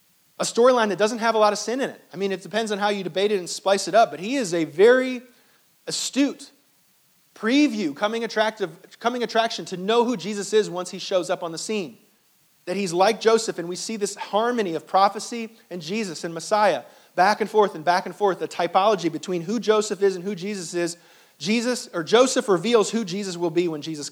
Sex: male